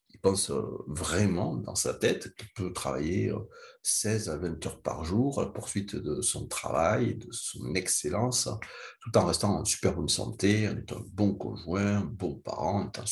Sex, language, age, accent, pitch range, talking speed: male, French, 60-79, French, 90-115 Hz, 180 wpm